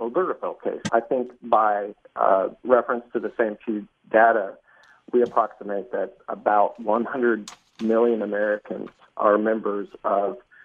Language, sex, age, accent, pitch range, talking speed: English, male, 50-69, American, 105-120 Hz, 125 wpm